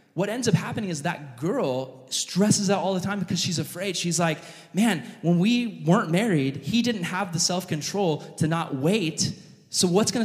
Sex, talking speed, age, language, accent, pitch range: male, 195 wpm, 20-39, English, American, 145-185 Hz